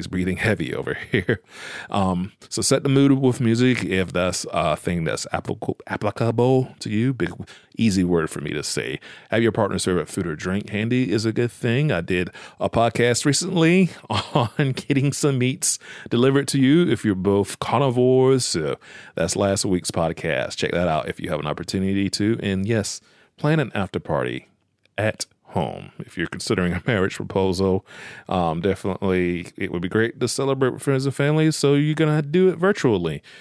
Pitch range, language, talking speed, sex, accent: 95-130 Hz, English, 180 wpm, male, American